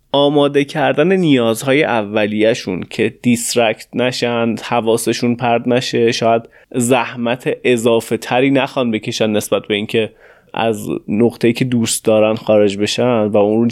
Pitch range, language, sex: 110-120 Hz, Persian, male